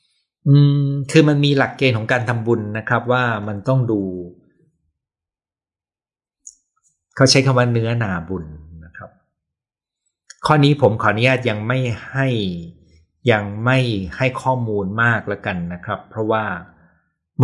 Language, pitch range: Thai, 90-125 Hz